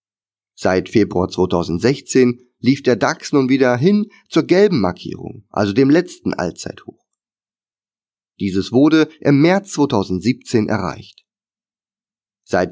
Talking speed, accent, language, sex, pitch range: 110 wpm, German, German, male, 100-140 Hz